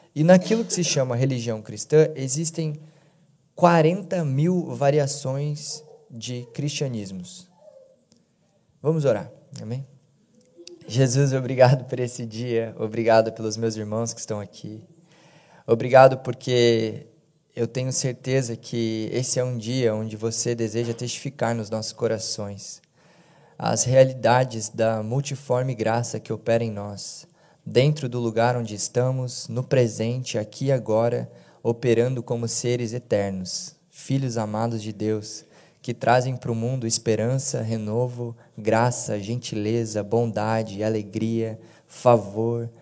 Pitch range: 115-140 Hz